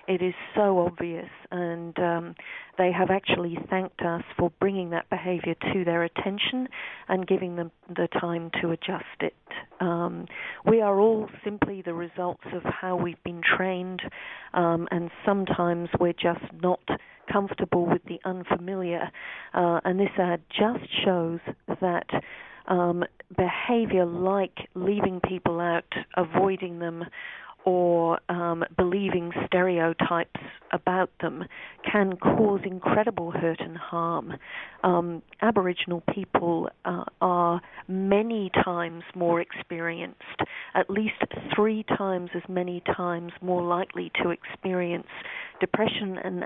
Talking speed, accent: 125 wpm, British